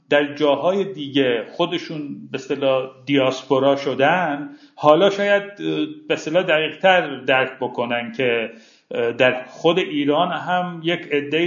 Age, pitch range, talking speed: 50-69, 145-195 Hz, 115 wpm